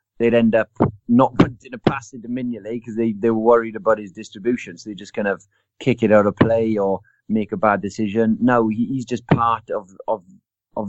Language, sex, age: English, male, 30-49